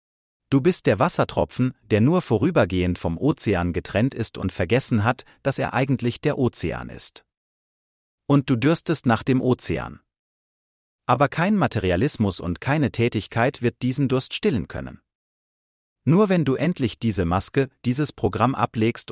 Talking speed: 145 wpm